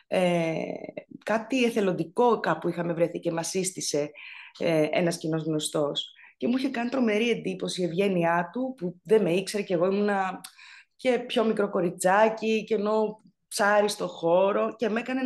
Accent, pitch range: native, 175-220 Hz